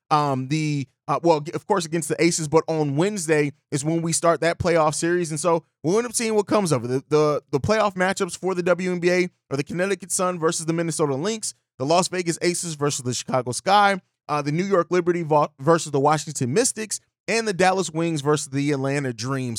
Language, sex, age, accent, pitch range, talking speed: English, male, 20-39, American, 150-180 Hz, 220 wpm